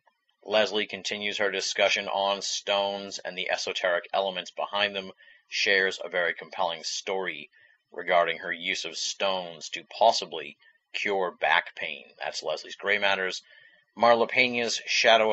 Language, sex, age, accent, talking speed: English, male, 30-49, American, 130 wpm